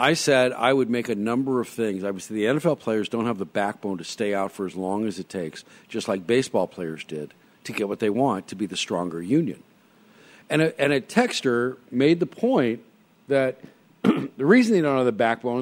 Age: 50-69